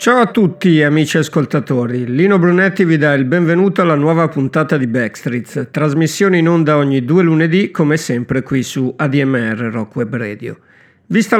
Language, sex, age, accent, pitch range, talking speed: Italian, male, 50-69, native, 130-175 Hz, 160 wpm